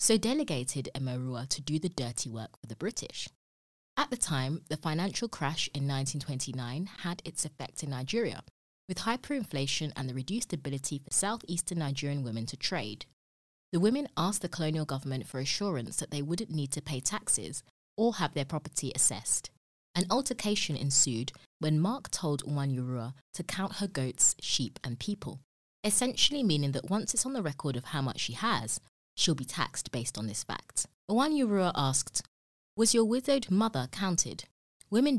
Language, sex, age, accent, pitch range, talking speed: English, female, 20-39, British, 130-195 Hz, 165 wpm